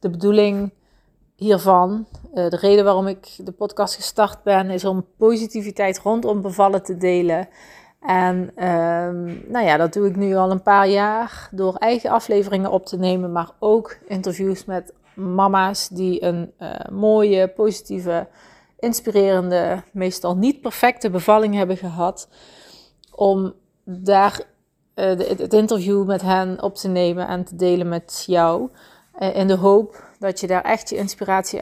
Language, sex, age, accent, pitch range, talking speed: Dutch, female, 30-49, Dutch, 180-205 Hz, 145 wpm